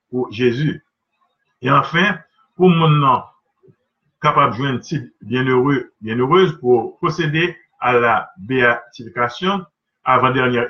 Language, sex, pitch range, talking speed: French, male, 125-170 Hz, 100 wpm